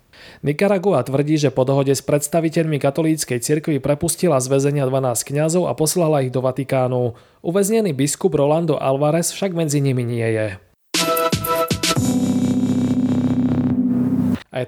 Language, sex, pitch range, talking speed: Slovak, male, 135-165 Hz, 115 wpm